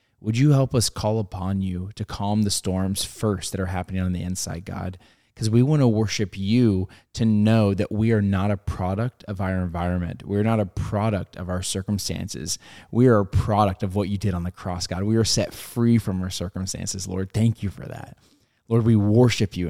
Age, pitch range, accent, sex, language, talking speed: 20-39, 95-110 Hz, American, male, English, 215 wpm